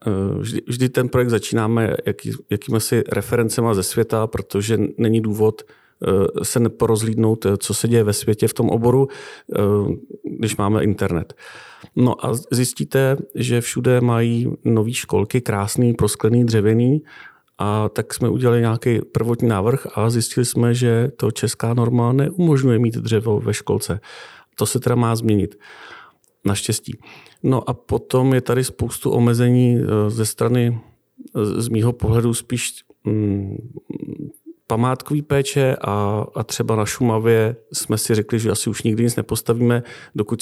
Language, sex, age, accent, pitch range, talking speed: Czech, male, 40-59, native, 110-120 Hz, 135 wpm